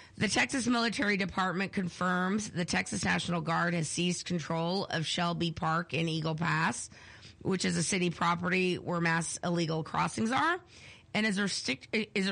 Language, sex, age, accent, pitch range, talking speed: English, female, 30-49, American, 170-215 Hz, 150 wpm